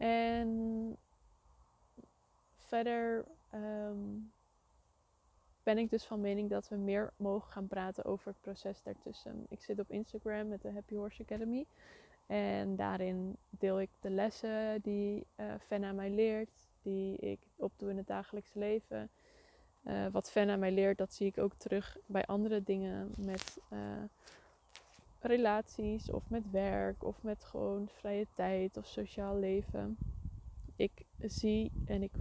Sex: female